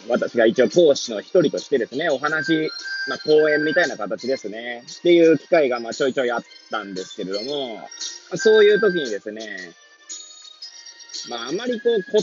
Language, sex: Japanese, male